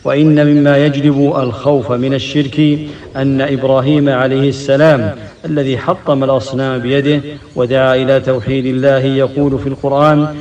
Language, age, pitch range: English, 50-69, 130-145 Hz